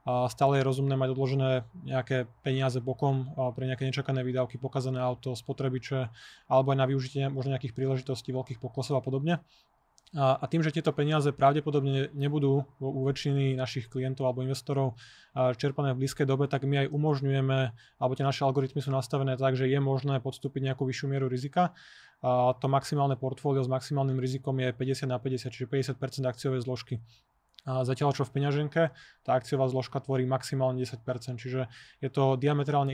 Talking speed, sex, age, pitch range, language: 170 wpm, male, 20-39, 130-140 Hz, Slovak